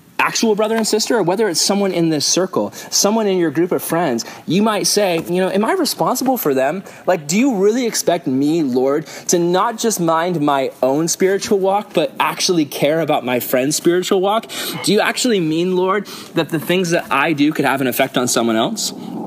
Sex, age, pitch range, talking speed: male, 20-39, 150-205 Hz, 210 wpm